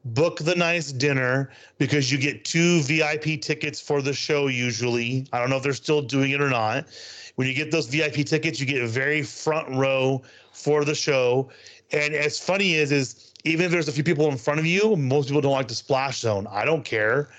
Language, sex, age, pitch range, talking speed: English, male, 30-49, 125-155 Hz, 225 wpm